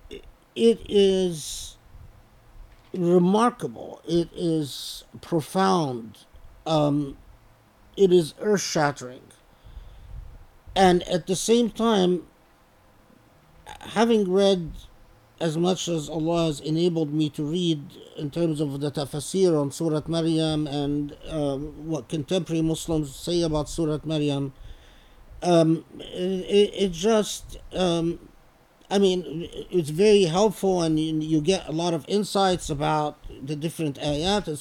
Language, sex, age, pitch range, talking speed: English, male, 50-69, 145-190 Hz, 115 wpm